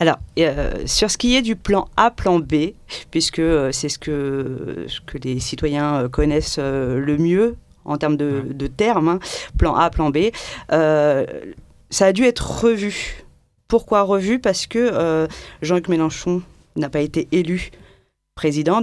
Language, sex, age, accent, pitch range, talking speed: French, female, 40-59, French, 150-185 Hz, 155 wpm